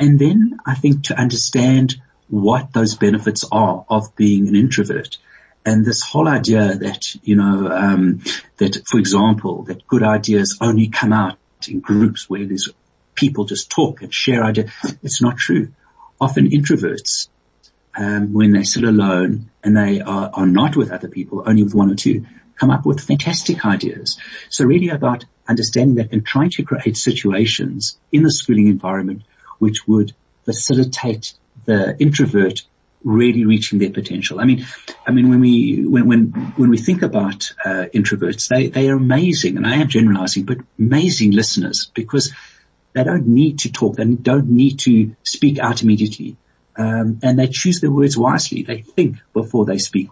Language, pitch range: English, 105-130 Hz